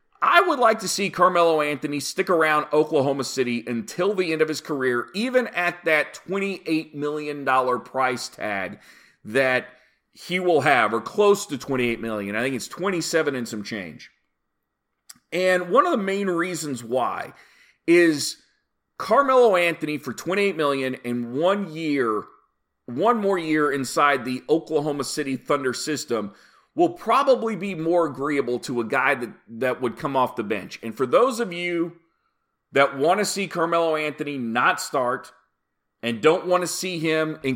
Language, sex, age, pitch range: English, male, 40-59, 125-175 Hz